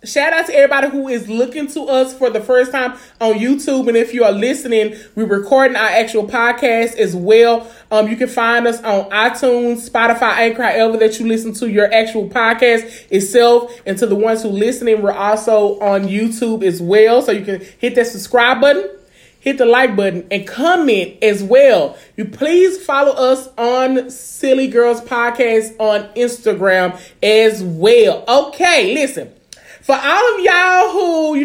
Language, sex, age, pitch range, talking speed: English, male, 20-39, 215-275 Hz, 175 wpm